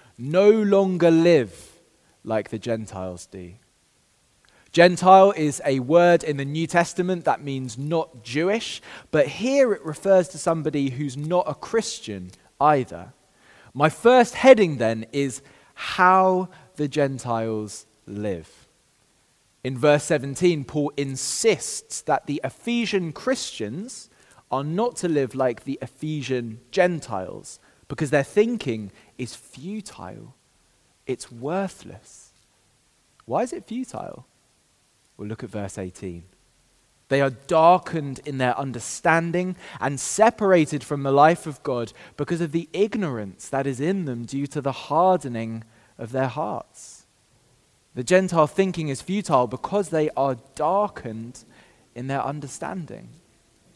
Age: 20-39